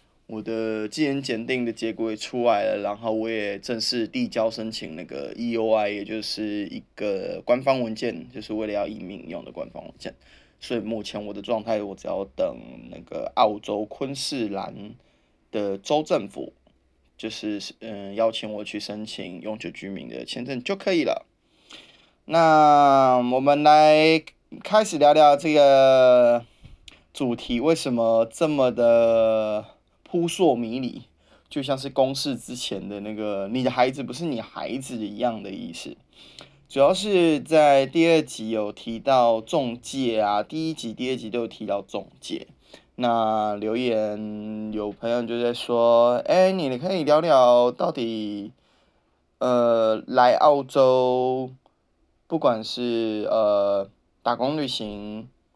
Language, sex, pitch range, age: English, male, 110-135 Hz, 20-39